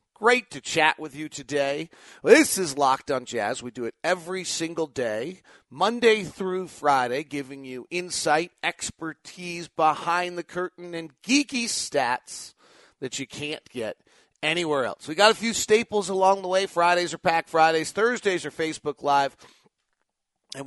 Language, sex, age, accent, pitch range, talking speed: English, male, 40-59, American, 130-175 Hz, 155 wpm